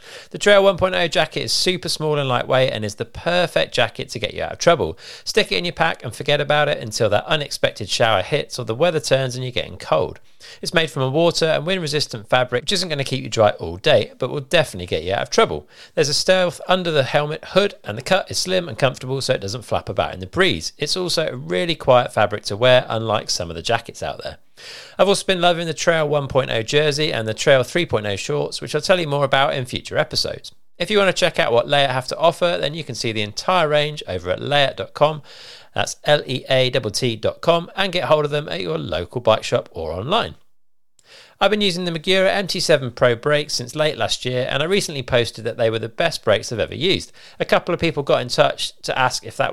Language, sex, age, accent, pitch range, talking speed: English, male, 40-59, British, 120-170 Hz, 240 wpm